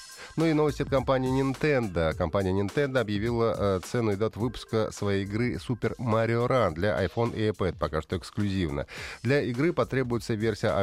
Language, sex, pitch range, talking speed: Russian, male, 95-130 Hz, 160 wpm